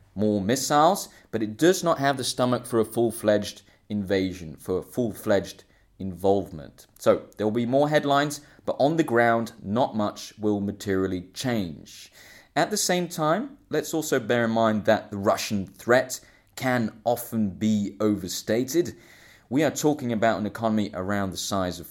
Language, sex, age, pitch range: English, male, 20-39, 105-135 Hz